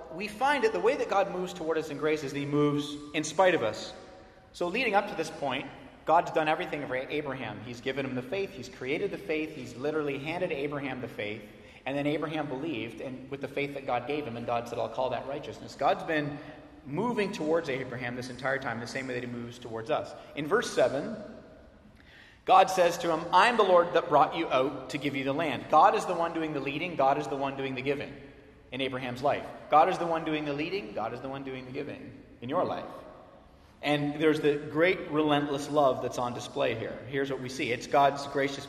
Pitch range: 135-160 Hz